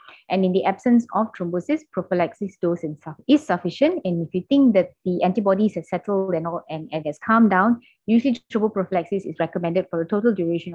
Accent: Malaysian